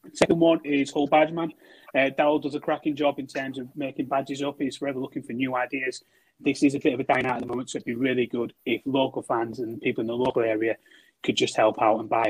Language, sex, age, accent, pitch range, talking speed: English, male, 30-49, British, 115-150 Hz, 270 wpm